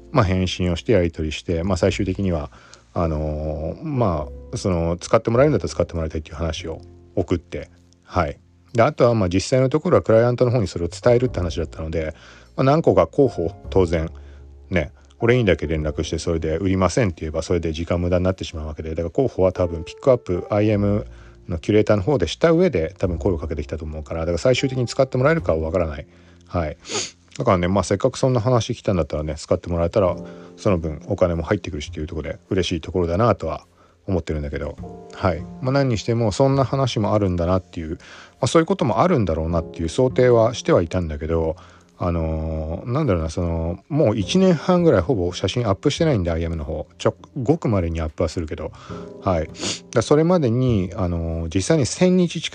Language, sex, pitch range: Japanese, male, 80-115 Hz